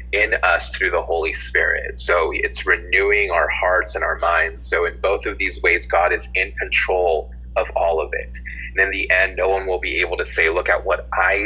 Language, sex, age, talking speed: English, male, 30-49, 225 wpm